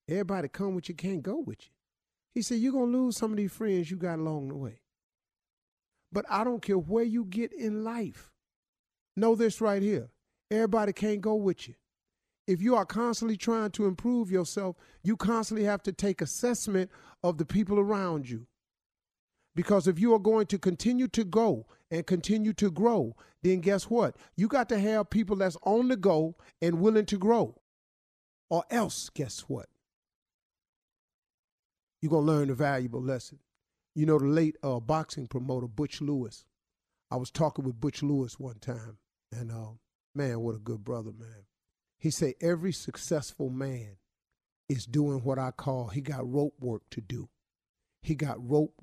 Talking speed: 175 wpm